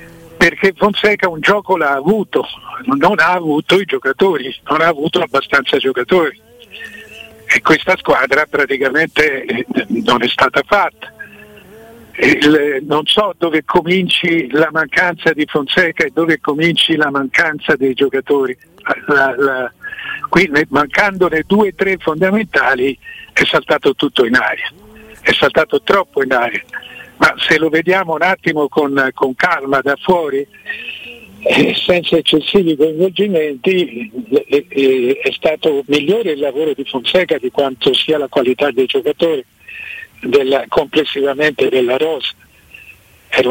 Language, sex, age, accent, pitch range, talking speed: Italian, male, 60-79, native, 145-205 Hz, 125 wpm